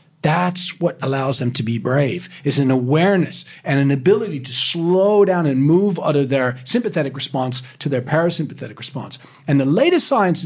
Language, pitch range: English, 135-180 Hz